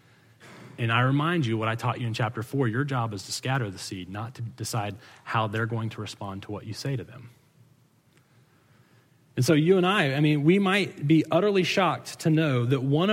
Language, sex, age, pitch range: English, male, 30-49, 125-180 Hz